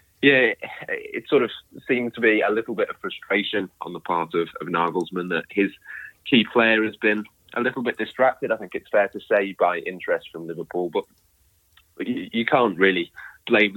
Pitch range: 90-110 Hz